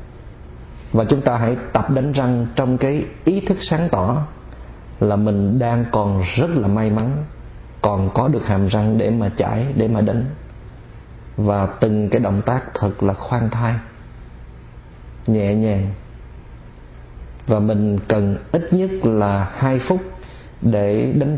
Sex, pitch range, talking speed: male, 95-125 Hz, 150 wpm